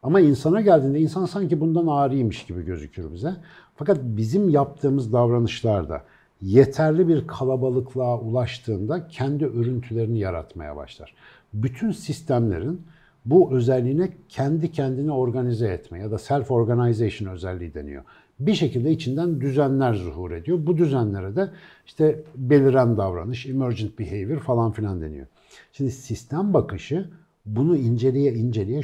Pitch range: 110-145 Hz